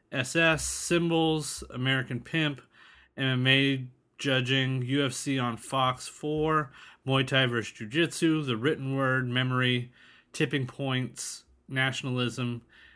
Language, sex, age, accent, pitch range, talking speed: English, male, 30-49, American, 115-140 Hz, 95 wpm